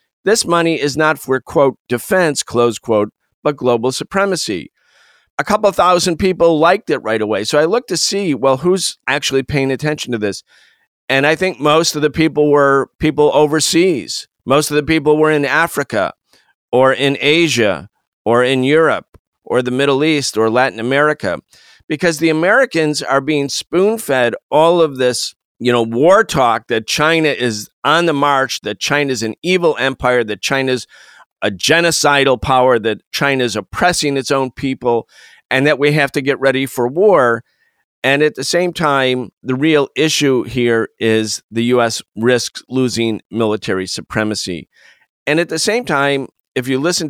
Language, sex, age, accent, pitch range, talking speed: English, male, 50-69, American, 125-160 Hz, 165 wpm